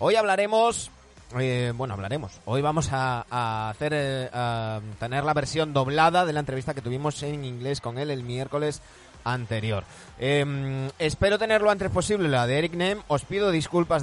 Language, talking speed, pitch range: Spanish, 165 wpm, 110-155 Hz